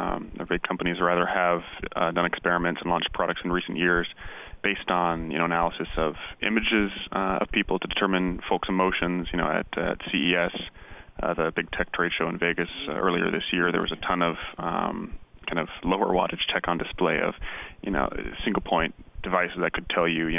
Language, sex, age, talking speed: English, male, 30-49, 200 wpm